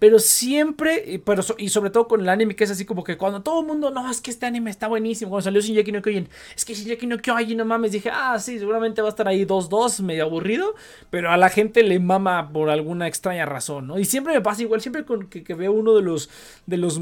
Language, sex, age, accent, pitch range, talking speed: Spanish, male, 30-49, Mexican, 190-250 Hz, 275 wpm